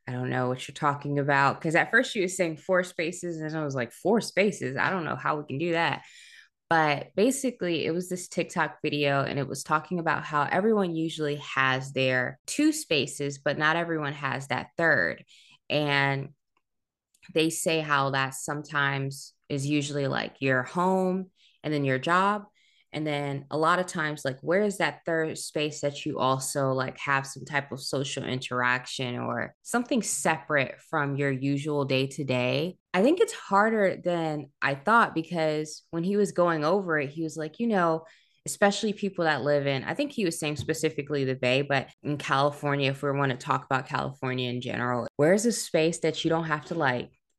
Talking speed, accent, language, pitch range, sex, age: 195 wpm, American, English, 135-170 Hz, female, 20-39